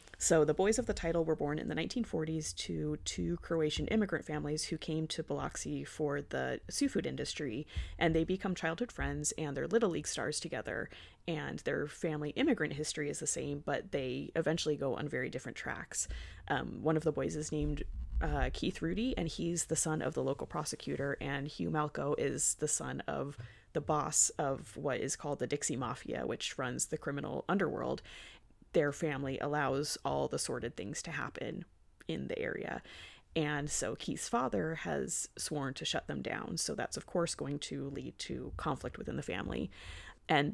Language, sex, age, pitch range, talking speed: English, female, 30-49, 145-175 Hz, 185 wpm